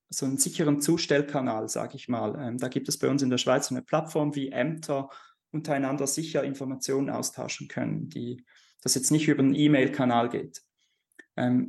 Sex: male